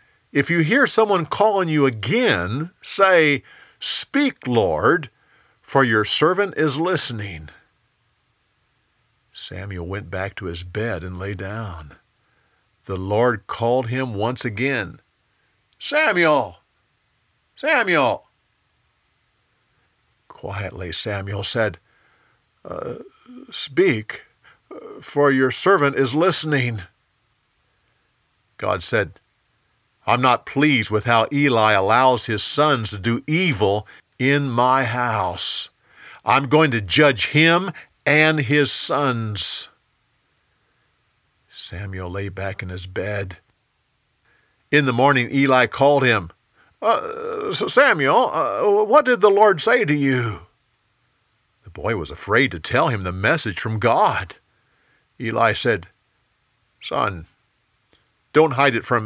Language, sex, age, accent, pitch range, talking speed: English, male, 50-69, American, 105-145 Hz, 110 wpm